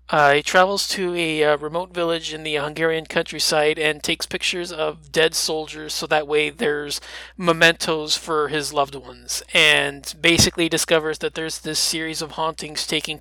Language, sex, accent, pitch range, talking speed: English, male, American, 150-170 Hz, 170 wpm